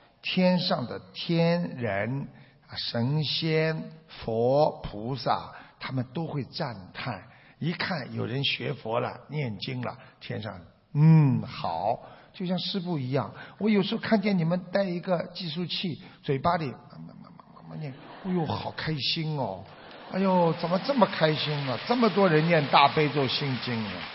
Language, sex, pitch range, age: Chinese, male, 130-190 Hz, 50-69